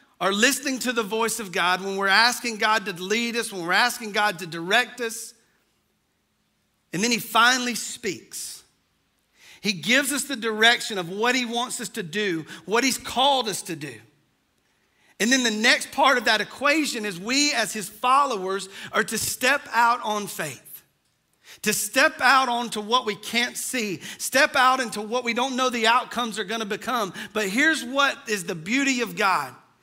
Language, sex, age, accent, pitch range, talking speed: English, male, 40-59, American, 205-265 Hz, 185 wpm